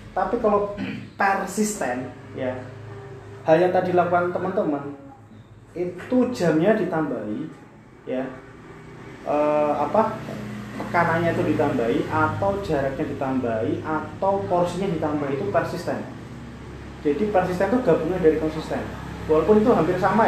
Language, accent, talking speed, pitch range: Indonesian, native, 105 wpm, 135-180 Hz